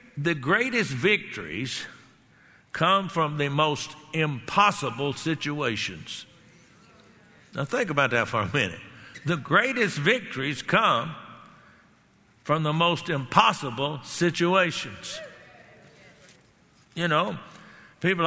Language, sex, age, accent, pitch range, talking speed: English, male, 60-79, American, 145-180 Hz, 90 wpm